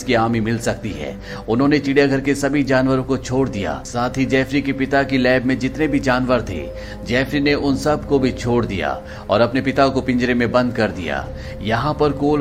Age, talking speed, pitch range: 40-59, 220 wpm, 115-140 Hz